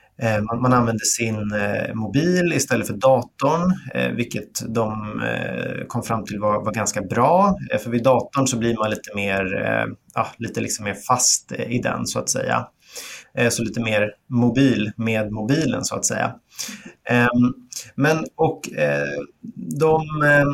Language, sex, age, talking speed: Swedish, male, 30-49, 130 wpm